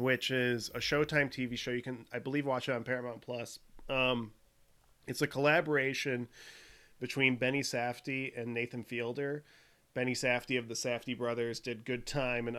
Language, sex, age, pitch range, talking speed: English, male, 30-49, 120-140 Hz, 165 wpm